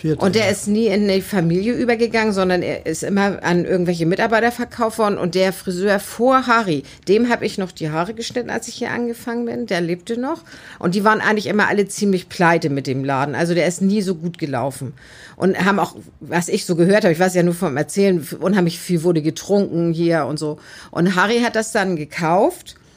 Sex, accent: female, German